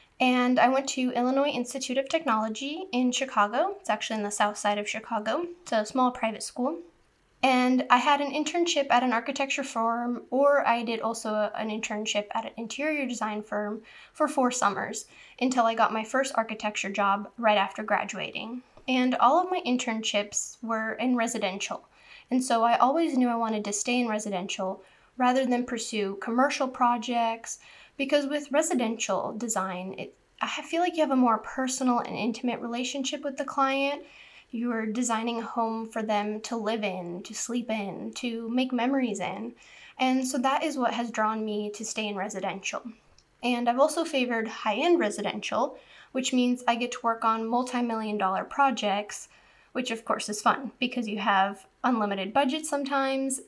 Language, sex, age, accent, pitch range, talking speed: English, female, 10-29, American, 220-260 Hz, 175 wpm